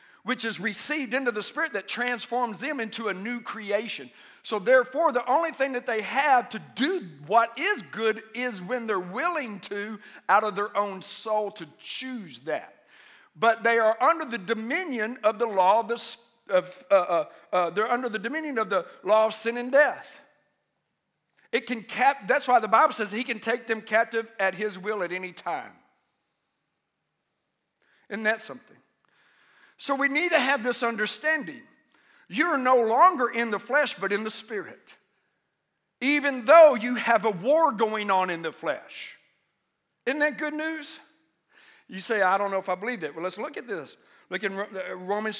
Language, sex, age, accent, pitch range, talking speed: English, male, 50-69, American, 205-260 Hz, 180 wpm